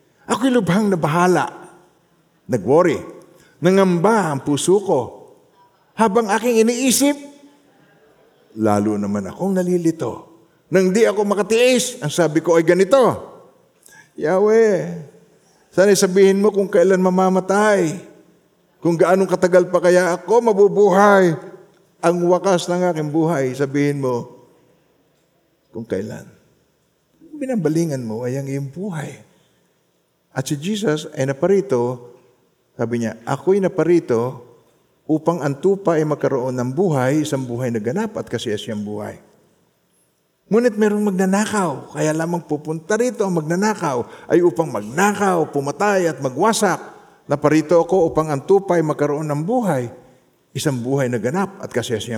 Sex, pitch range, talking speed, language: male, 145-200 Hz, 120 wpm, Filipino